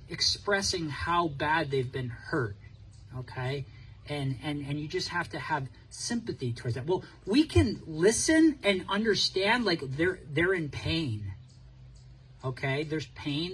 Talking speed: 140 wpm